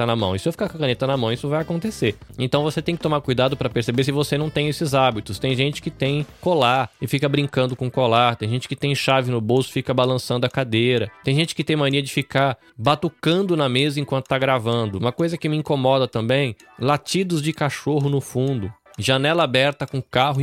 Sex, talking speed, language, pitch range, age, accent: male, 230 wpm, Portuguese, 120-145 Hz, 20-39, Brazilian